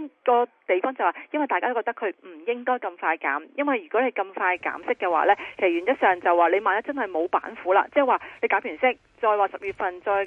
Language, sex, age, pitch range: Chinese, female, 30-49, 190-265 Hz